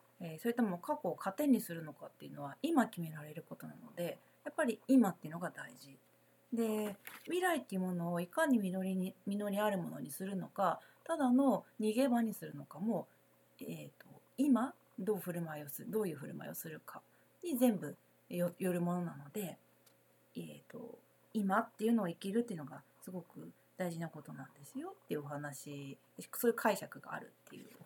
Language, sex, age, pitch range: Japanese, female, 30-49, 160-230 Hz